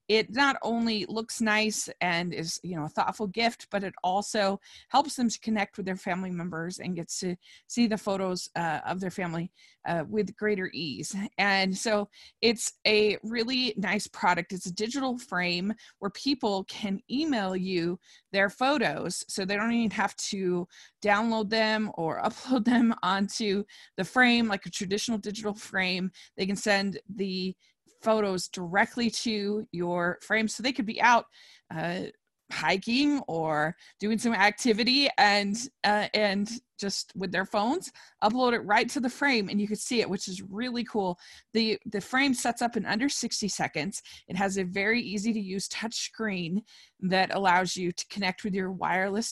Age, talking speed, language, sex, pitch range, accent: 20-39, 175 wpm, English, female, 190-225 Hz, American